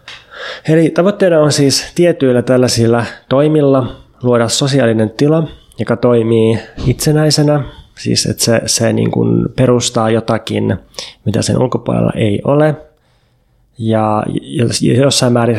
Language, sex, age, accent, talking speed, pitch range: Finnish, male, 20-39, native, 110 wpm, 110-130 Hz